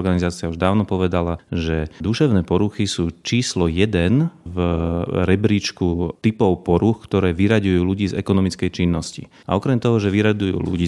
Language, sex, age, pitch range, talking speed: Slovak, male, 30-49, 90-110 Hz, 145 wpm